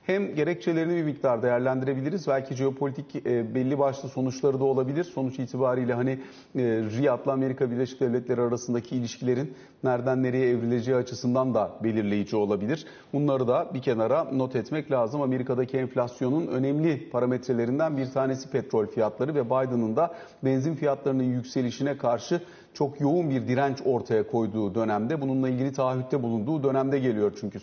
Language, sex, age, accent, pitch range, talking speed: Turkish, male, 40-59, native, 125-140 Hz, 140 wpm